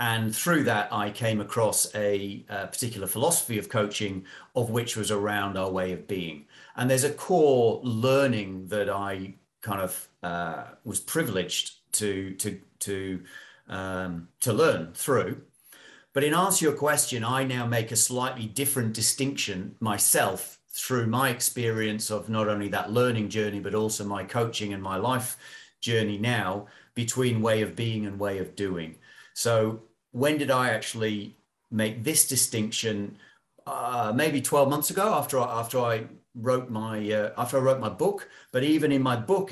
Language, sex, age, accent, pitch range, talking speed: English, male, 40-59, British, 100-125 Hz, 155 wpm